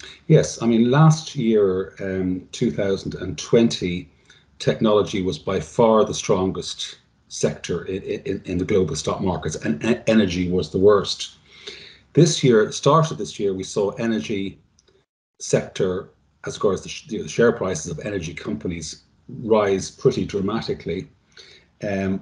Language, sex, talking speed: English, male, 135 wpm